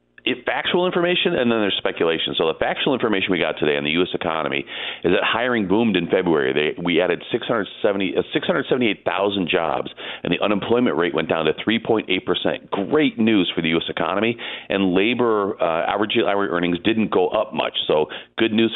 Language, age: English, 40-59